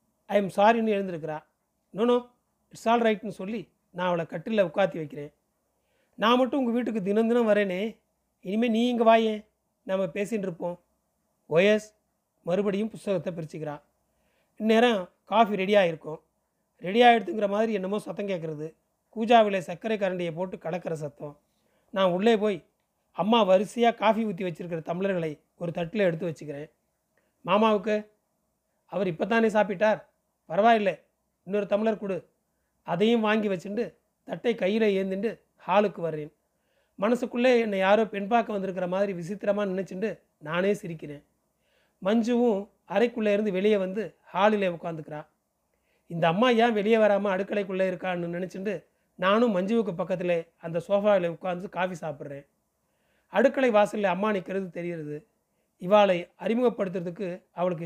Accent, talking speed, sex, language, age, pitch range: native, 120 wpm, male, Tamil, 30-49, 180-215 Hz